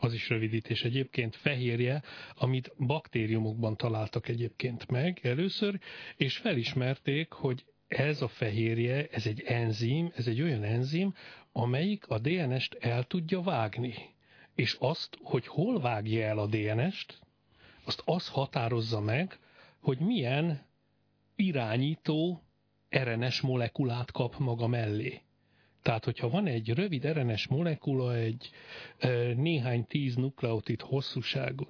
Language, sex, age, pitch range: Hungarian, male, 40-59, 115-150 Hz